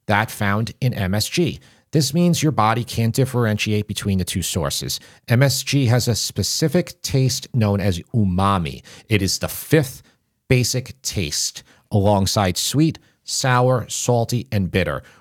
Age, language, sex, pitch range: 40-59, English, male, 105-135 Hz